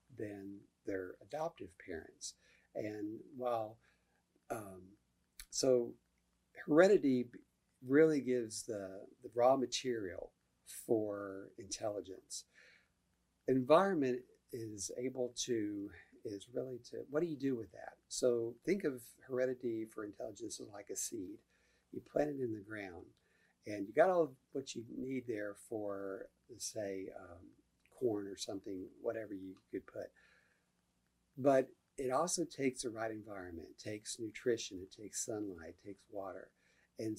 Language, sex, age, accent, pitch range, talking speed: English, male, 50-69, American, 105-130 Hz, 130 wpm